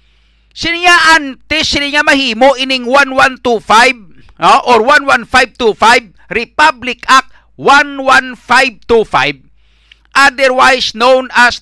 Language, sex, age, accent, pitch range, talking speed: English, male, 50-69, Filipino, 220-290 Hz, 130 wpm